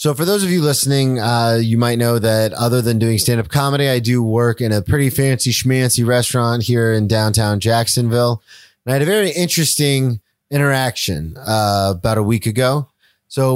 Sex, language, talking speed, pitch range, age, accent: male, English, 185 wpm, 115-140 Hz, 30-49, American